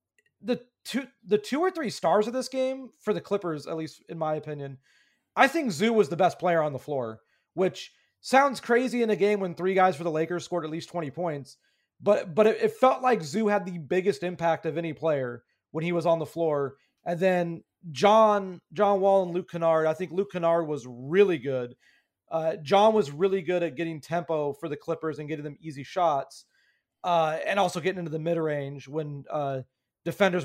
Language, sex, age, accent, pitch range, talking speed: English, male, 30-49, American, 160-210 Hz, 210 wpm